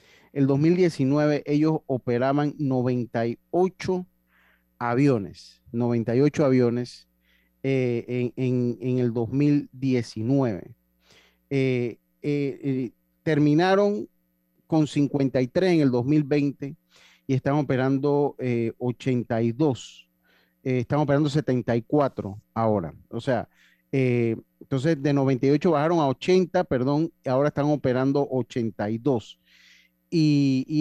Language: Spanish